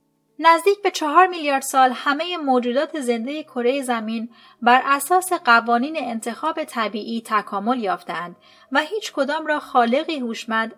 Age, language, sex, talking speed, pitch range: 30-49, Persian, female, 130 wpm, 210-300 Hz